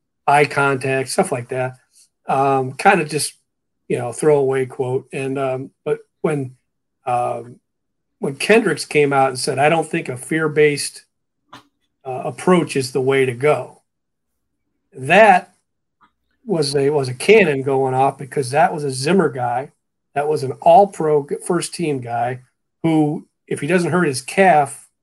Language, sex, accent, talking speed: English, male, American, 150 wpm